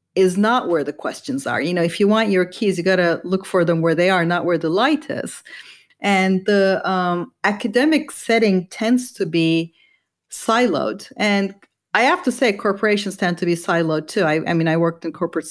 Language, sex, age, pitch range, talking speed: English, female, 40-59, 170-215 Hz, 205 wpm